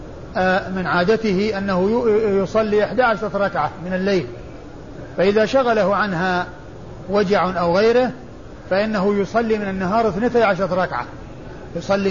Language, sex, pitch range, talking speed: Arabic, male, 175-205 Hz, 110 wpm